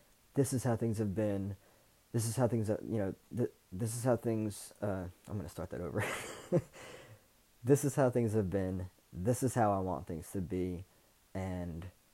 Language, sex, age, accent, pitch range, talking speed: English, male, 20-39, American, 95-115 Hz, 190 wpm